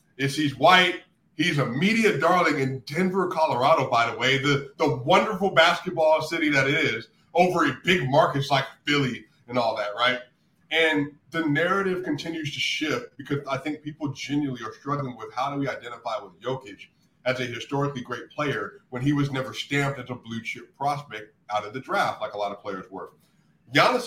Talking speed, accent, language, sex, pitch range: 190 wpm, American, English, male, 135-165 Hz